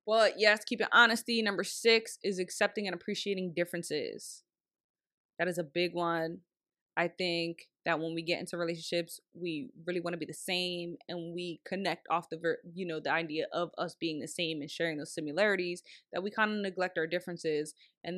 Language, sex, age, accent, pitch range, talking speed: English, female, 20-39, American, 165-185 Hz, 190 wpm